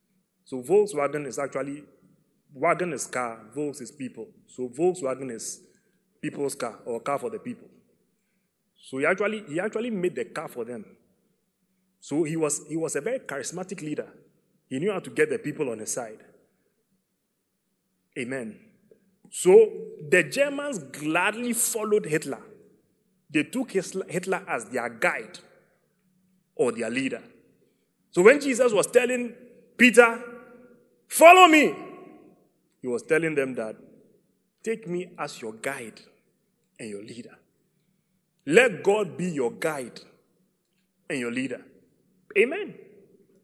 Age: 30-49